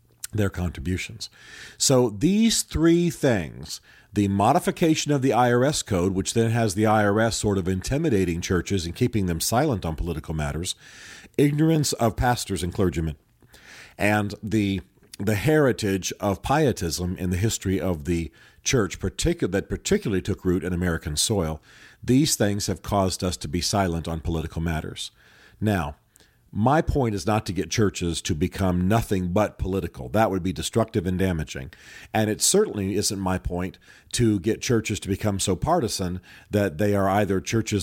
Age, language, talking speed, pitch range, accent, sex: 40-59, English, 160 wpm, 90-115 Hz, American, male